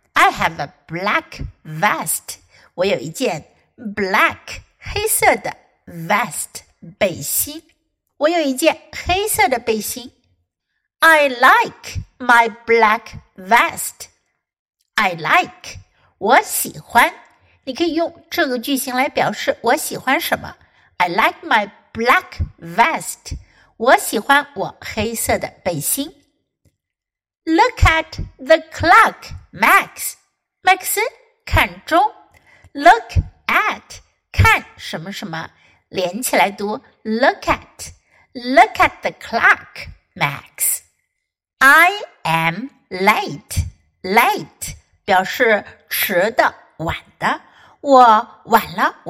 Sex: female